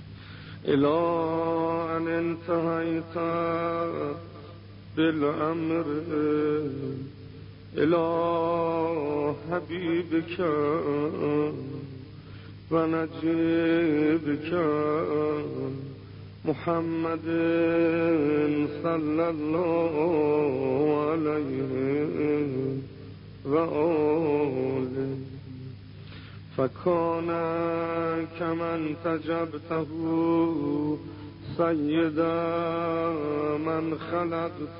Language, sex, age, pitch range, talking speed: Persian, male, 50-69, 135-165 Hz, 40 wpm